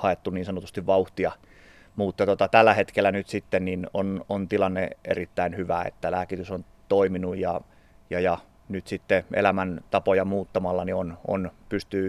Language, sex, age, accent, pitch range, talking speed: Finnish, male, 30-49, native, 90-105 Hz, 155 wpm